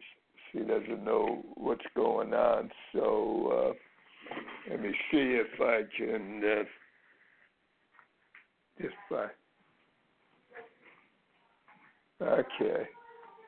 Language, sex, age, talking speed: English, male, 60-79, 80 wpm